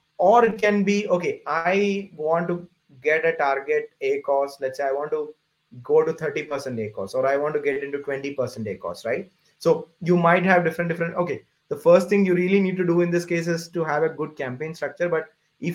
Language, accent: English, Indian